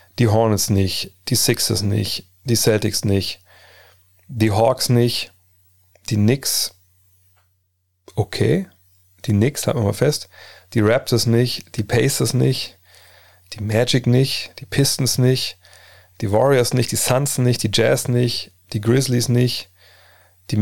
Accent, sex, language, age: German, male, German, 40-59